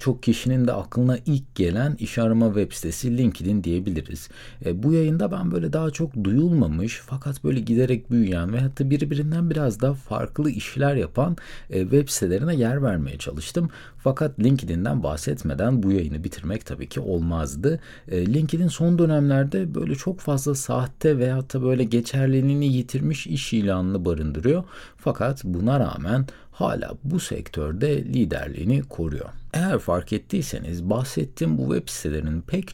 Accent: native